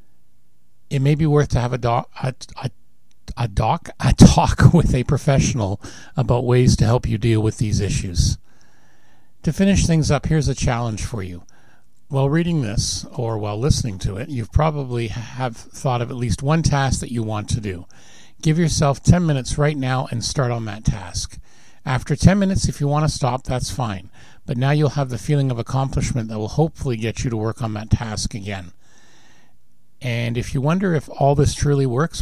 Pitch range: 115-145 Hz